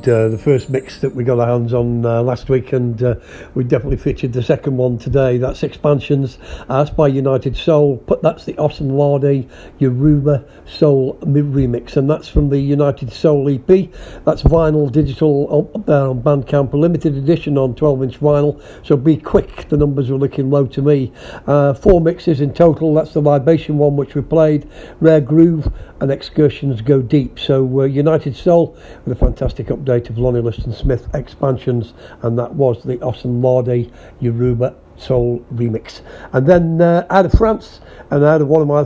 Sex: male